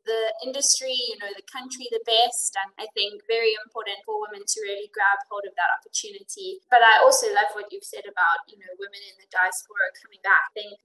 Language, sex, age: English, female, 10-29